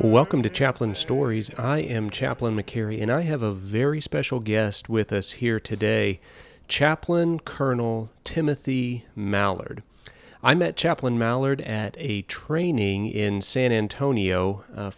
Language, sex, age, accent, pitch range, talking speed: English, male, 30-49, American, 100-130 Hz, 135 wpm